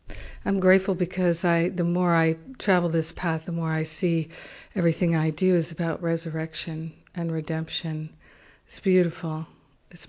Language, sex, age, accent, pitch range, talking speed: English, female, 60-79, American, 165-190 Hz, 150 wpm